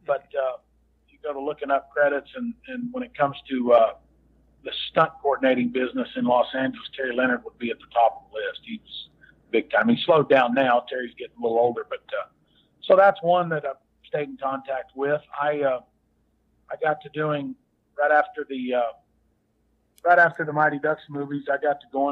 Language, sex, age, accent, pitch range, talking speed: English, male, 50-69, American, 130-155 Hz, 205 wpm